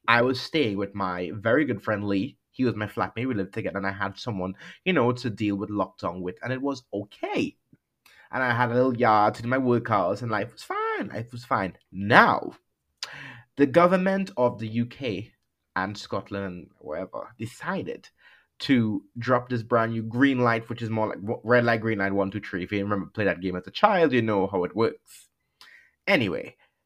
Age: 20-39